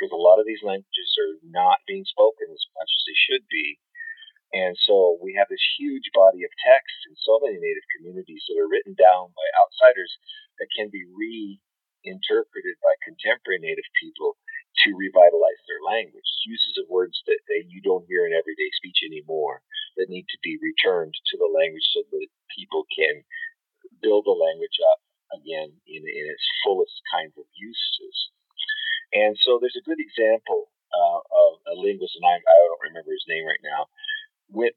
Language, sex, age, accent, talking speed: English, male, 40-59, American, 180 wpm